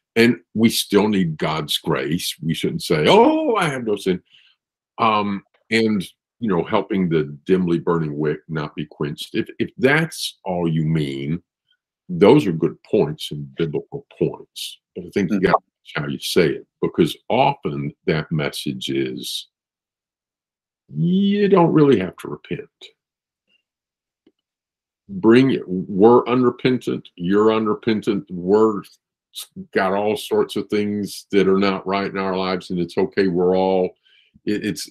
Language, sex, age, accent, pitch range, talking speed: English, male, 50-69, American, 85-120 Hz, 145 wpm